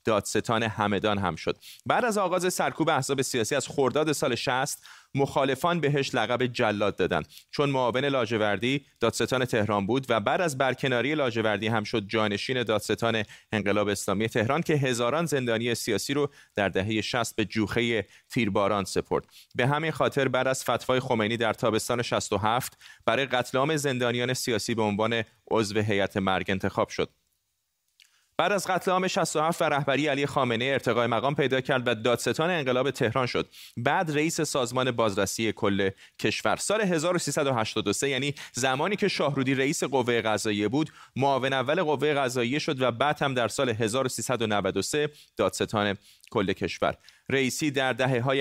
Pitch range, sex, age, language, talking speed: 110-140 Hz, male, 30-49, Persian, 150 wpm